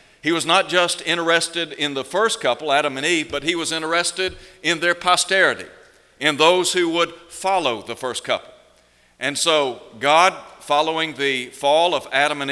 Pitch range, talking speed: 150-180 Hz, 175 wpm